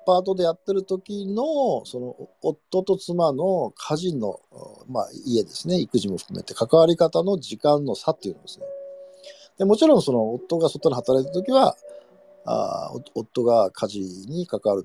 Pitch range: 140-215 Hz